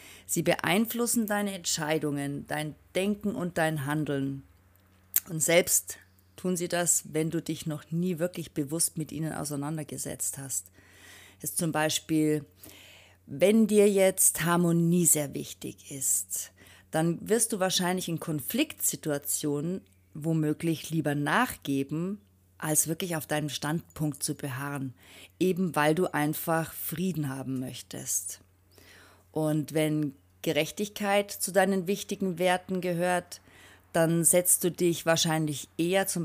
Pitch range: 130-175 Hz